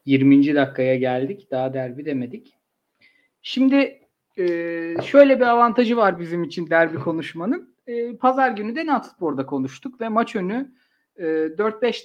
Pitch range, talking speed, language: 155-255 Hz, 120 wpm, Turkish